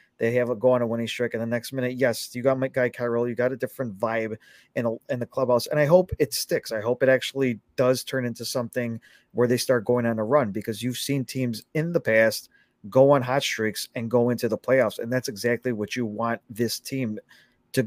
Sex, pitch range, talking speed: male, 115-135 Hz, 245 wpm